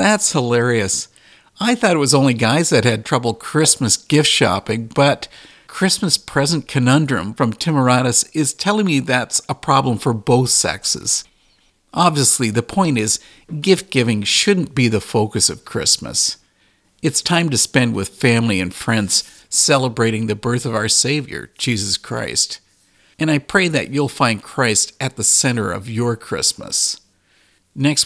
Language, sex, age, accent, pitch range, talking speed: English, male, 50-69, American, 115-150 Hz, 150 wpm